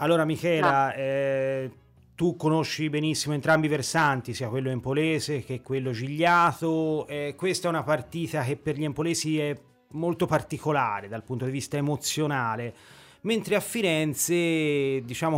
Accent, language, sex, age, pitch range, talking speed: native, Italian, male, 30-49, 130-160 Hz, 140 wpm